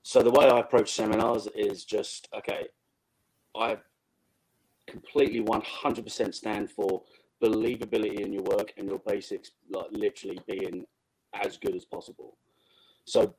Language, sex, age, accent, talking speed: English, male, 30-49, British, 130 wpm